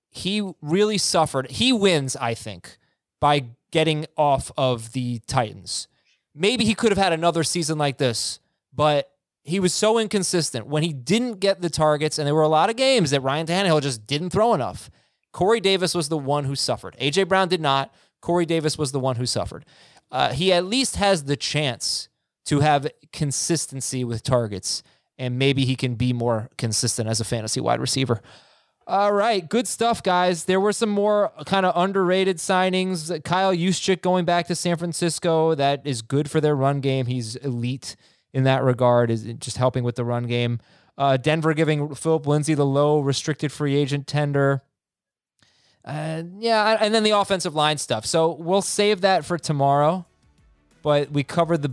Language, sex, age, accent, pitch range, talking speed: English, male, 20-39, American, 130-180 Hz, 180 wpm